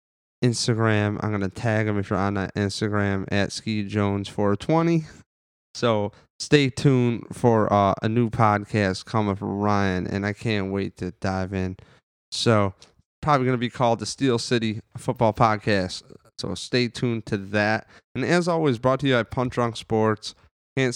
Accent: American